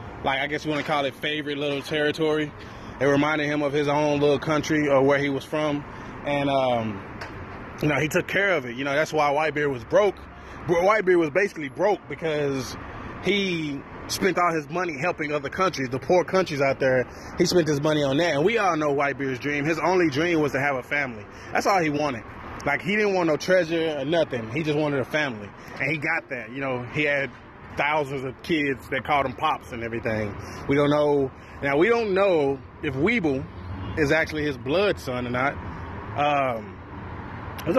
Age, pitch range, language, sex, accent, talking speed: 20-39, 130-165 Hz, English, male, American, 210 wpm